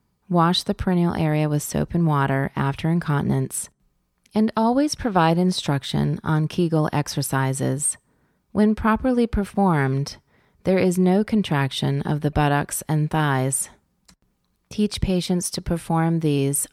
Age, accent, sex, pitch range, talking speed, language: 30-49, American, female, 140-185 Hz, 120 wpm, English